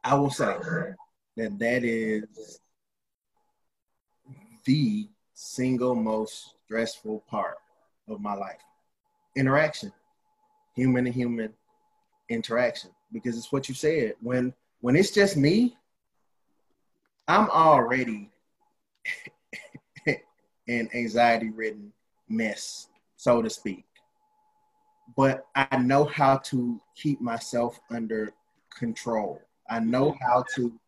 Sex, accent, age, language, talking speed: male, American, 20-39, English, 100 wpm